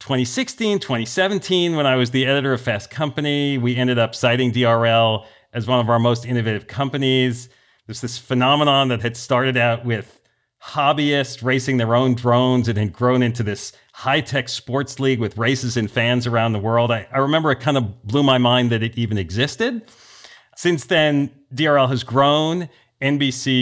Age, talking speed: 40-59, 175 wpm